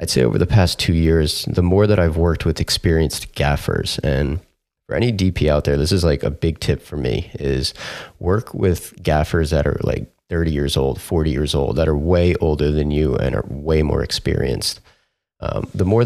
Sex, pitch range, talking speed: male, 80-100 Hz, 210 wpm